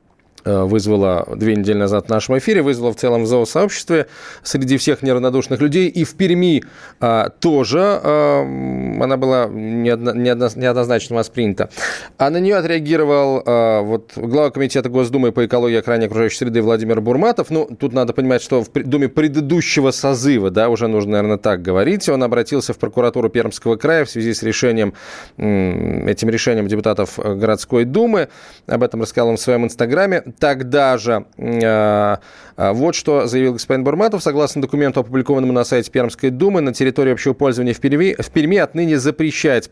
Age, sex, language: 20-39, male, Russian